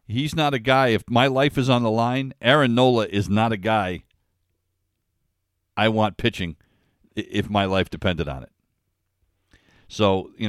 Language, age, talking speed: English, 50-69, 160 wpm